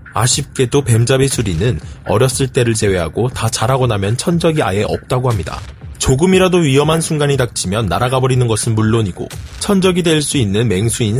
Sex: male